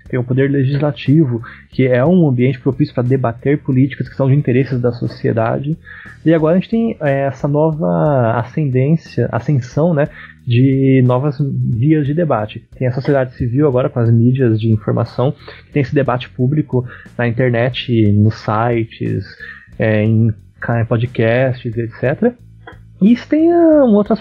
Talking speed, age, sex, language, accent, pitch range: 145 wpm, 20-39, male, Portuguese, Brazilian, 115-155 Hz